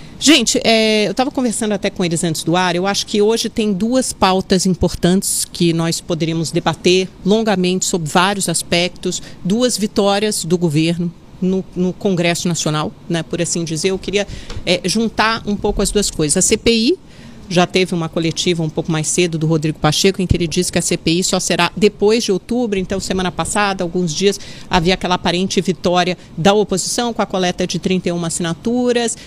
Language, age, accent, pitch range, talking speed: Portuguese, 40-59, Brazilian, 175-210 Hz, 180 wpm